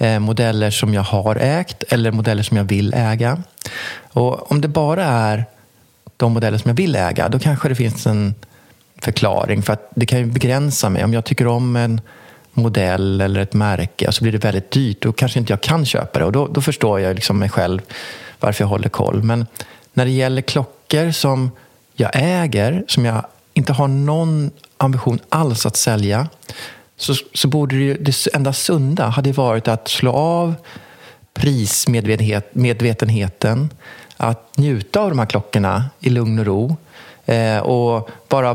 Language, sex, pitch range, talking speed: Swedish, male, 110-140 Hz, 170 wpm